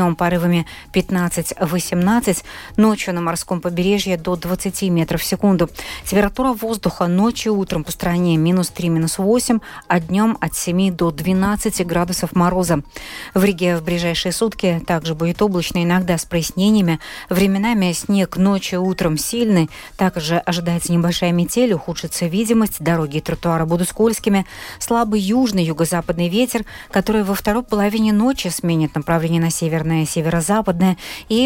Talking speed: 135 wpm